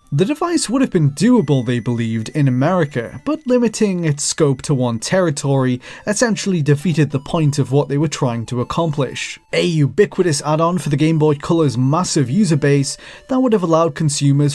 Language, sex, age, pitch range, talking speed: English, male, 20-39, 130-175 Hz, 180 wpm